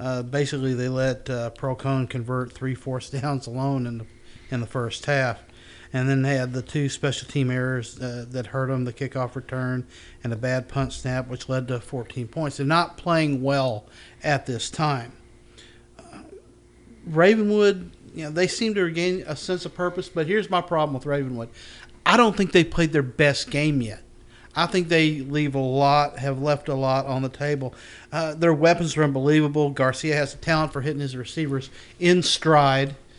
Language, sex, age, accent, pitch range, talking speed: English, male, 50-69, American, 130-155 Hz, 190 wpm